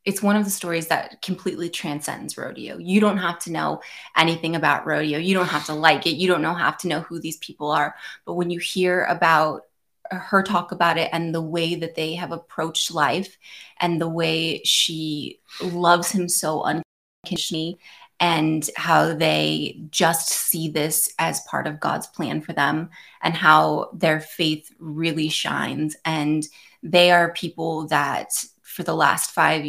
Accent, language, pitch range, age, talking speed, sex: American, English, 155-175 Hz, 20-39, 170 wpm, female